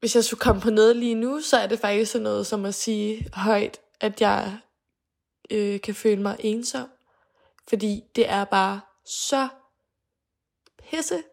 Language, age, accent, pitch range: Danish, 20-39, native, 200-235 Hz